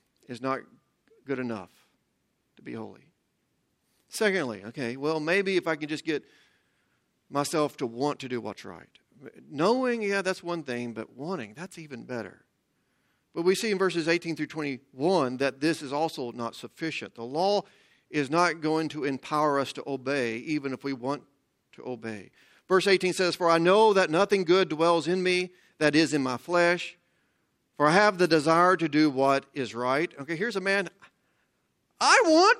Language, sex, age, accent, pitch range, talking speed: English, male, 40-59, American, 140-220 Hz, 175 wpm